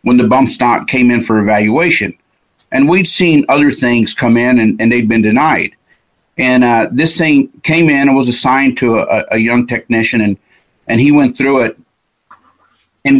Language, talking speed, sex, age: English, 185 wpm, male, 50-69